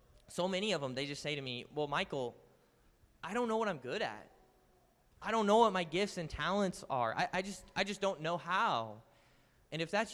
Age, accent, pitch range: 20-39, American, 135-175 Hz